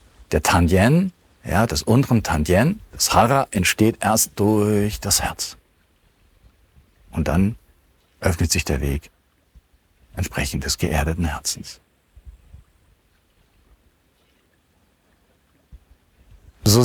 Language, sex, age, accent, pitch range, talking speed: German, male, 50-69, German, 80-115 Hz, 85 wpm